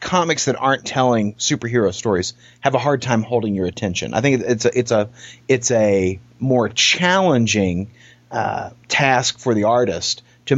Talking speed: 165 wpm